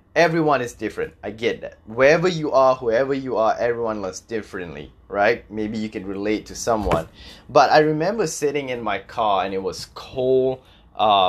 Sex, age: male, 20-39